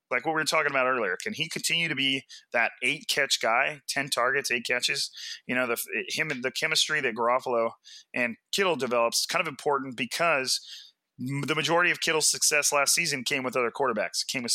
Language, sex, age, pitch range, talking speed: English, male, 30-49, 125-150 Hz, 210 wpm